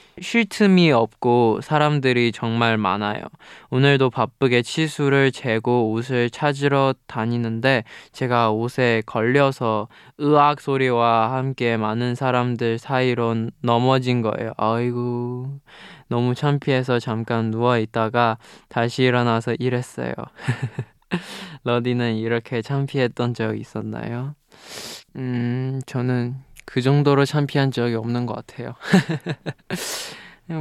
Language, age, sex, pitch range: Korean, 20-39, male, 115-135 Hz